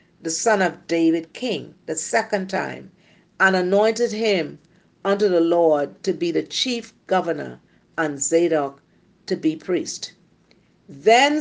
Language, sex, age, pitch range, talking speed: English, female, 50-69, 180-245 Hz, 130 wpm